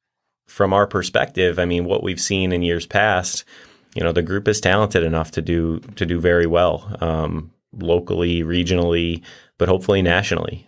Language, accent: English, American